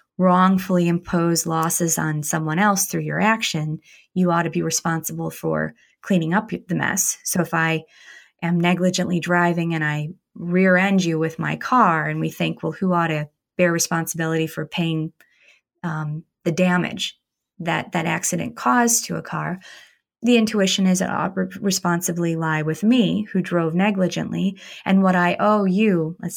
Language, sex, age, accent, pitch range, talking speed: English, female, 20-39, American, 170-195 Hz, 165 wpm